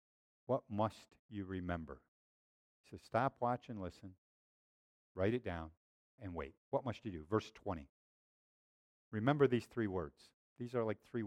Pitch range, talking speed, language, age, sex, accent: 85-120 Hz, 150 wpm, English, 50-69, male, American